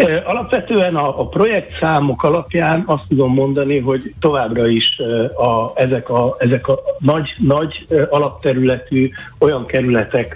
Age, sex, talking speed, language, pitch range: 60-79, male, 120 wpm, Hungarian, 115-140 Hz